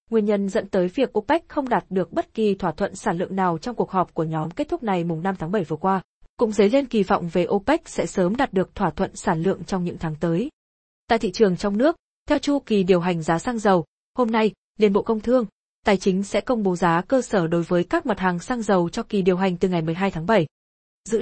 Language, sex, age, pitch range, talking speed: Vietnamese, female, 20-39, 180-225 Hz, 265 wpm